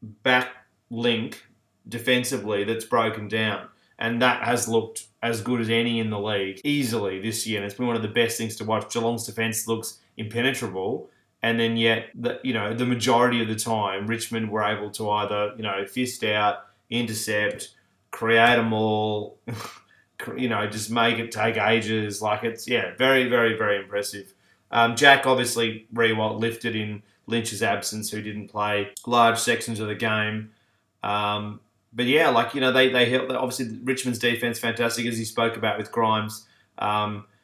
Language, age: English, 20-39